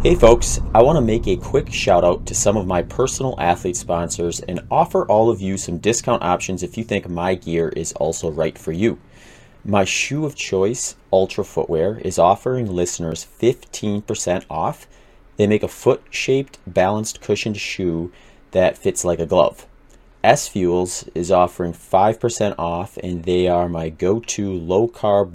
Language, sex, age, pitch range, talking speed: English, male, 30-49, 85-115 Hz, 165 wpm